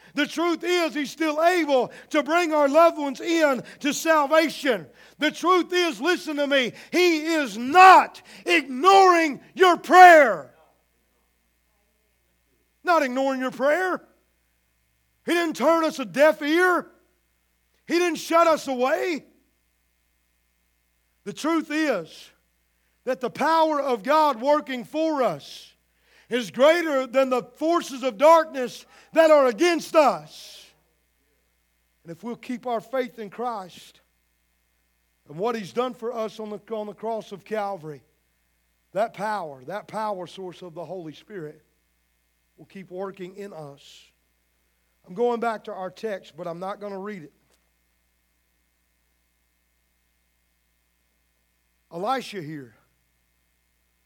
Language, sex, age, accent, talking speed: English, male, 50-69, American, 125 wpm